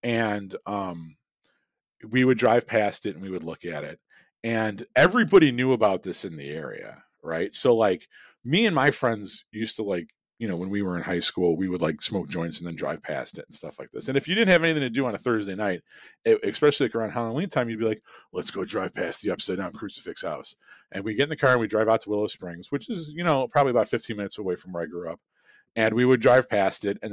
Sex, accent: male, American